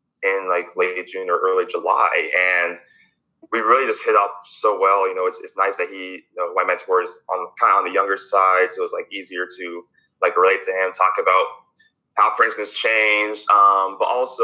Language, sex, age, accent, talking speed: English, male, 20-39, American, 215 wpm